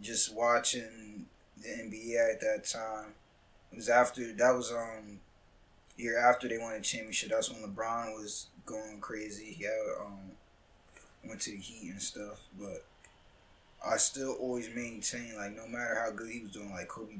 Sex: male